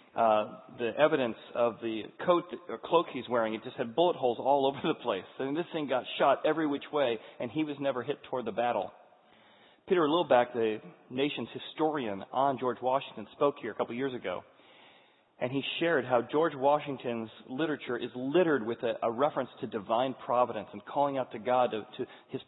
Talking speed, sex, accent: 195 wpm, male, American